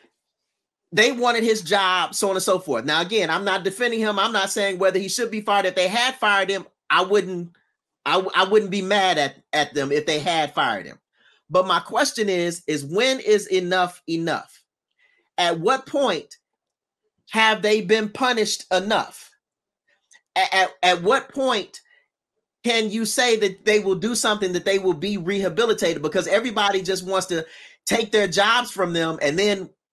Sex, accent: male, American